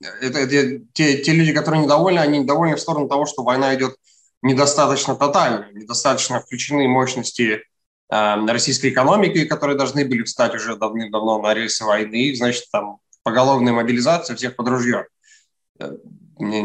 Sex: male